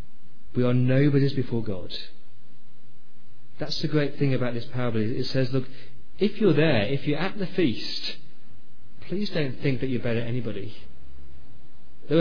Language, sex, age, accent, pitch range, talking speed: English, male, 40-59, British, 115-150 Hz, 155 wpm